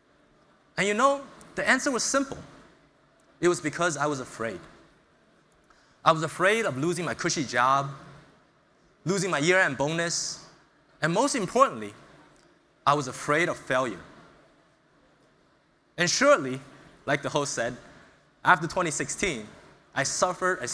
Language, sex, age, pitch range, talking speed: English, male, 20-39, 150-215 Hz, 125 wpm